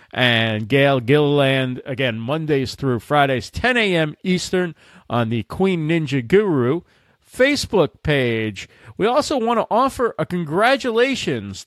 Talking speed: 125 wpm